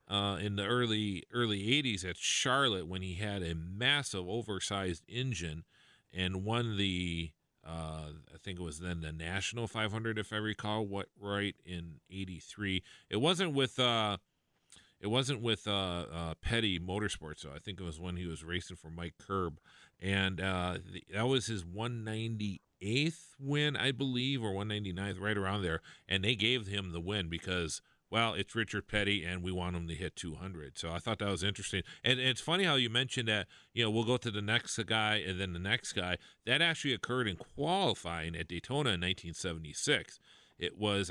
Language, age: English, 40-59